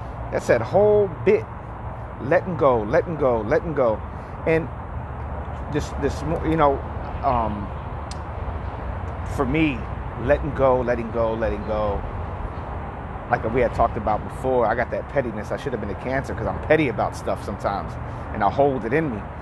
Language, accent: English, American